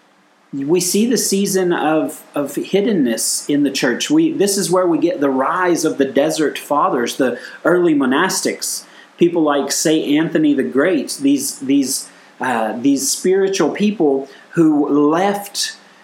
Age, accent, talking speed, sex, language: 30-49, American, 145 wpm, male, English